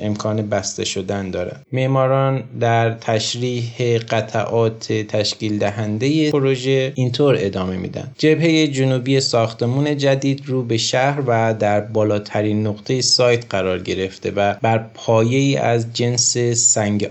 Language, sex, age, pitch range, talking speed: Persian, male, 20-39, 105-130 Hz, 120 wpm